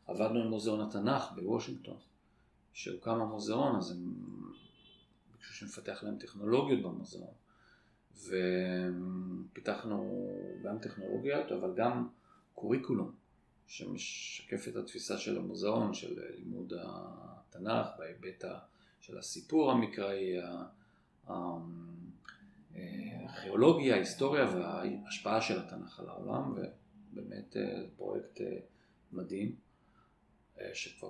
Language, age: Hebrew, 40-59